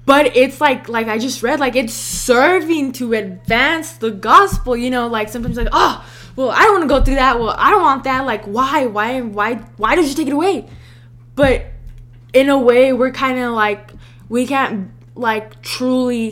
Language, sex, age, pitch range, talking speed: English, female, 10-29, 210-255 Hz, 200 wpm